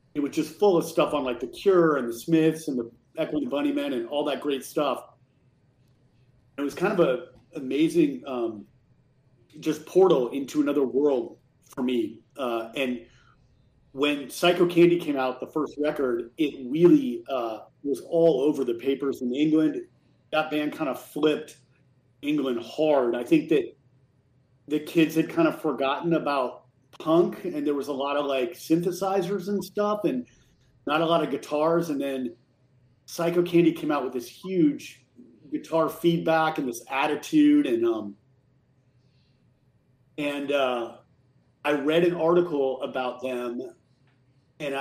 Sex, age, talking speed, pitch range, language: male, 40-59, 155 wpm, 130-170 Hz, English